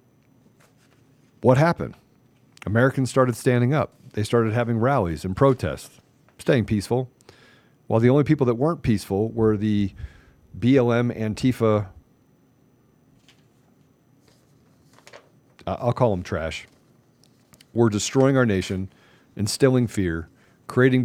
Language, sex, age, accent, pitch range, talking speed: English, male, 40-59, American, 100-130 Hz, 105 wpm